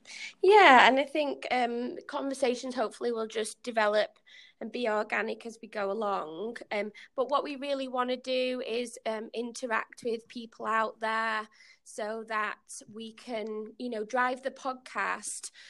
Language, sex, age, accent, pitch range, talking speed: English, female, 20-39, British, 215-250 Hz, 155 wpm